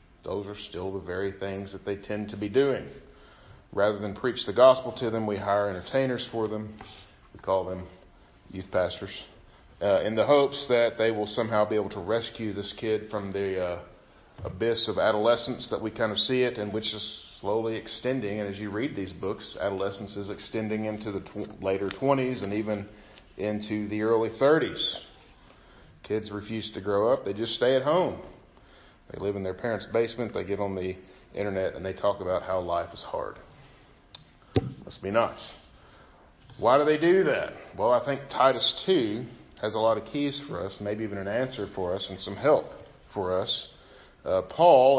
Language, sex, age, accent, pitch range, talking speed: English, male, 40-59, American, 100-130 Hz, 190 wpm